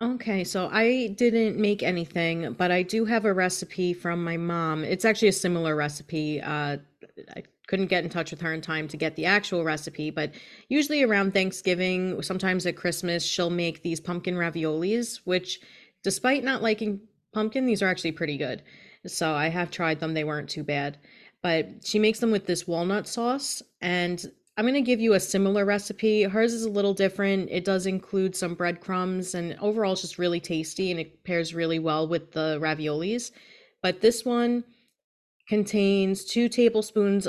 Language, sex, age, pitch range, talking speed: English, female, 30-49, 170-210 Hz, 180 wpm